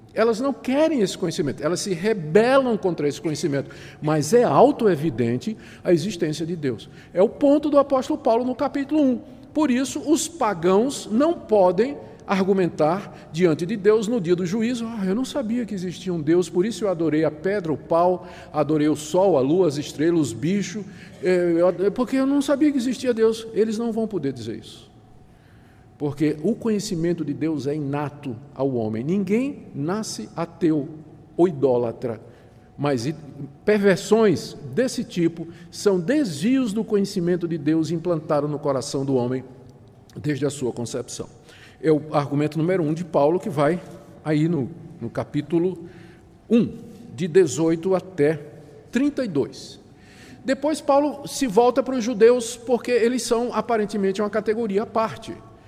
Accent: Brazilian